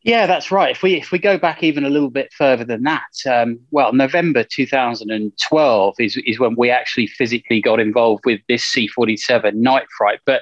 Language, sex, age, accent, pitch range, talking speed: English, male, 20-39, British, 120-145 Hz, 225 wpm